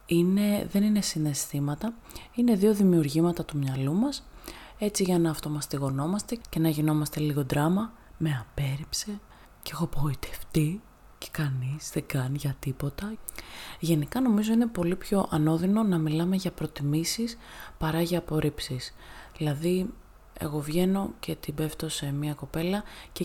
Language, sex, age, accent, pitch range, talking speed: Greek, female, 20-39, native, 150-205 Hz, 140 wpm